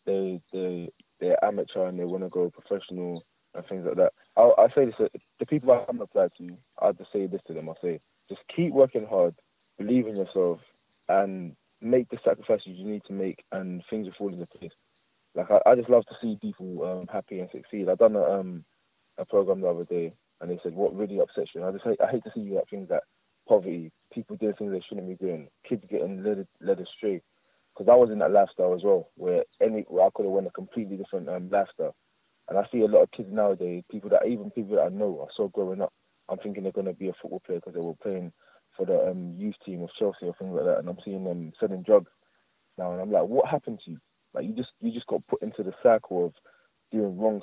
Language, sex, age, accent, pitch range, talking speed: English, male, 20-39, British, 90-125 Hz, 250 wpm